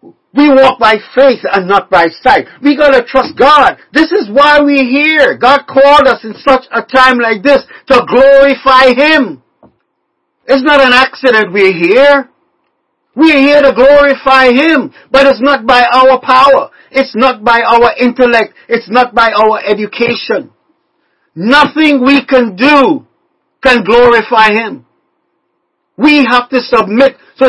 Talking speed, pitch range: 150 wpm, 230-275 Hz